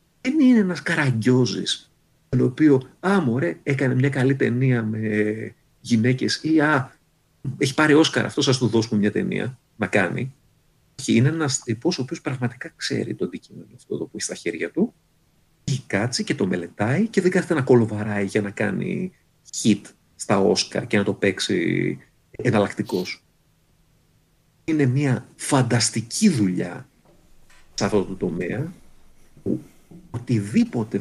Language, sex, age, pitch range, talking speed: Greek, male, 50-69, 110-145 Hz, 140 wpm